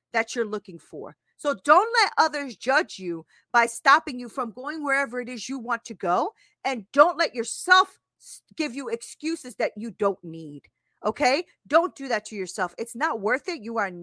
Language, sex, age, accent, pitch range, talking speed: English, female, 40-59, American, 220-290 Hz, 195 wpm